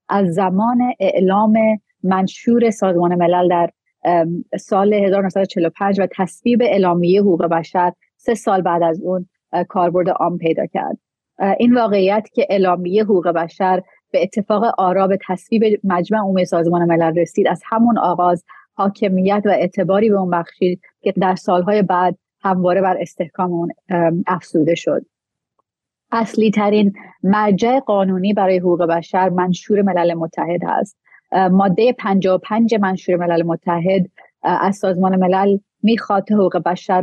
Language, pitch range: Persian, 180-205 Hz